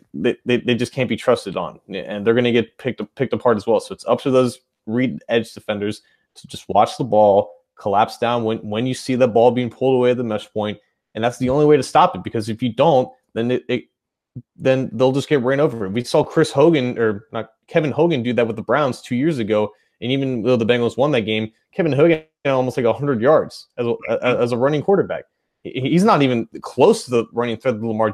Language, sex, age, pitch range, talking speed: English, male, 30-49, 110-135 Hz, 245 wpm